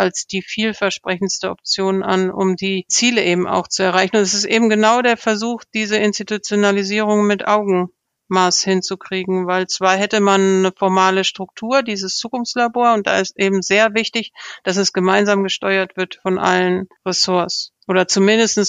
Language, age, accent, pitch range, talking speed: German, 50-69, German, 185-205 Hz, 155 wpm